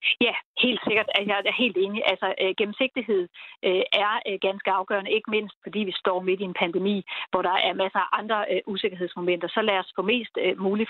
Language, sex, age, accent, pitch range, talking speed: Danish, female, 30-49, native, 190-235 Hz, 185 wpm